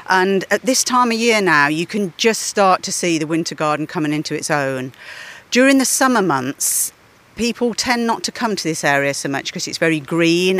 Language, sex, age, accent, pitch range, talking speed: English, female, 40-59, British, 155-190 Hz, 215 wpm